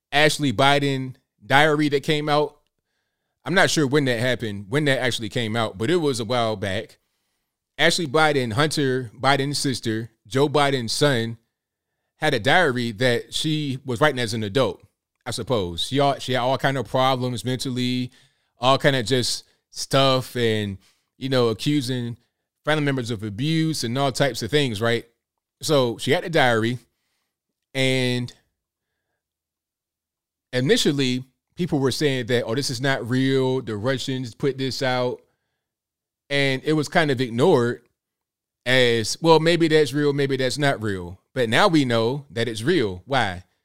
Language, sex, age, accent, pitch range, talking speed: English, male, 20-39, American, 115-140 Hz, 155 wpm